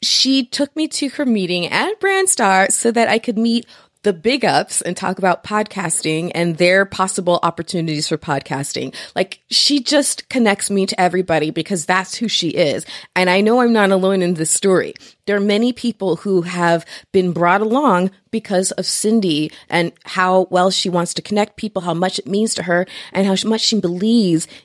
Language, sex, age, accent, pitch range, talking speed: English, female, 30-49, American, 175-230 Hz, 190 wpm